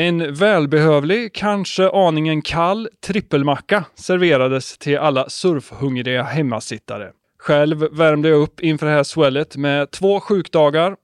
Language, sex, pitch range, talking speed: Swedish, male, 145-185 Hz, 120 wpm